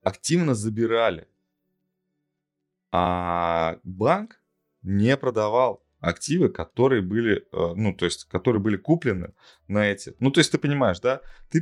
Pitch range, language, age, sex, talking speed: 90-130 Hz, Russian, 20-39, male, 125 wpm